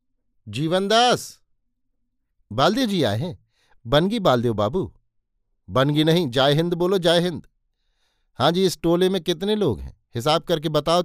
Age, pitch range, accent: 50-69, 115-160 Hz, native